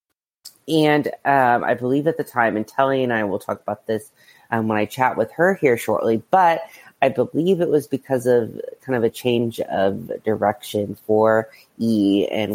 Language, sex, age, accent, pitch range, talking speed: English, female, 30-49, American, 105-135 Hz, 185 wpm